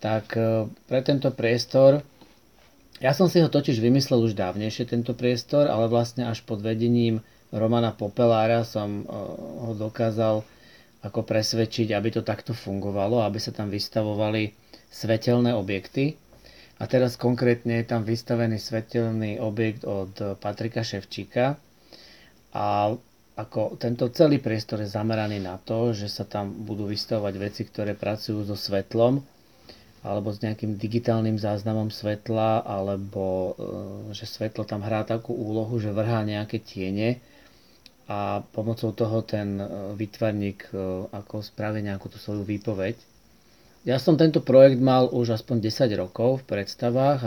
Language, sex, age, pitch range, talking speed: Slovak, male, 40-59, 105-120 Hz, 135 wpm